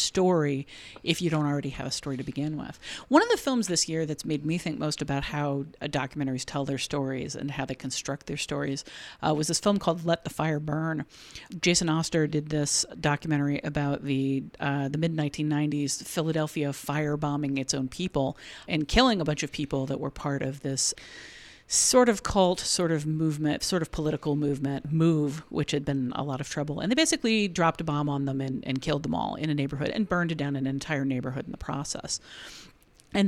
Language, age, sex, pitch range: English, 50-69, female, 145-170 Hz